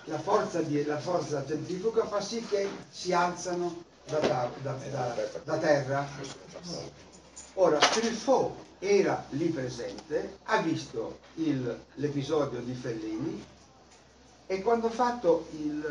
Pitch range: 135-185 Hz